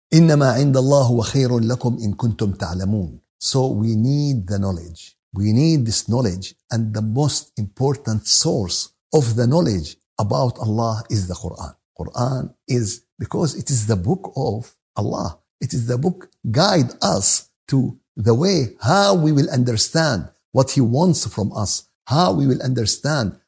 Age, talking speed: 60-79, 155 wpm